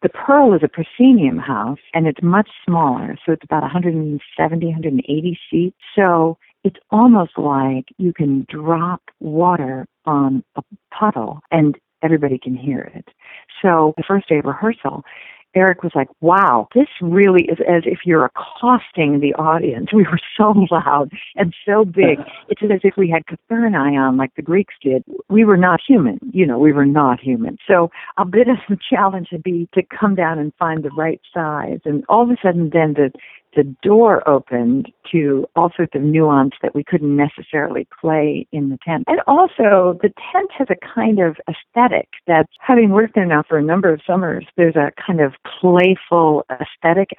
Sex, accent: female, American